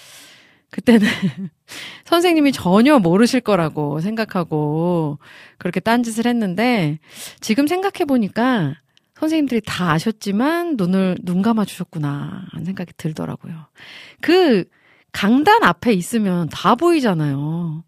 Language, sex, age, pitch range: Korean, female, 40-59, 165-245 Hz